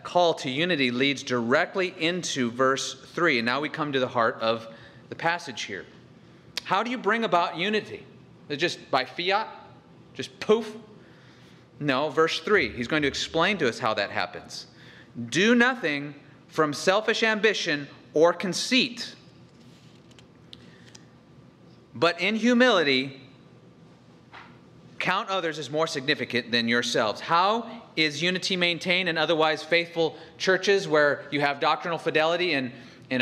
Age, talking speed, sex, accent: 30-49, 135 wpm, male, American